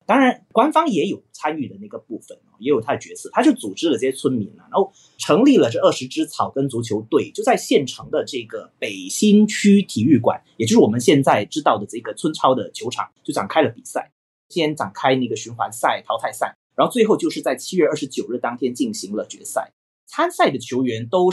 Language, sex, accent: Chinese, male, native